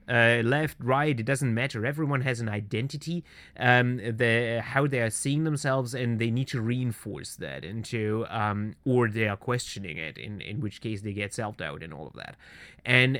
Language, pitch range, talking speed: English, 115-145 Hz, 190 wpm